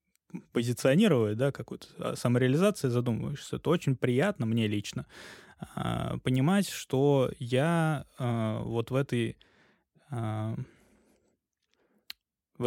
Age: 20-39